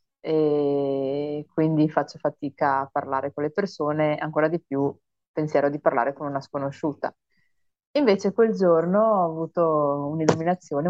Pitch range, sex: 150-175 Hz, female